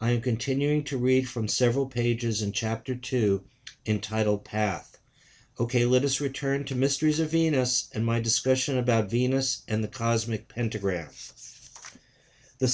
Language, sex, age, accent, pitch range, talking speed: English, male, 50-69, American, 115-135 Hz, 145 wpm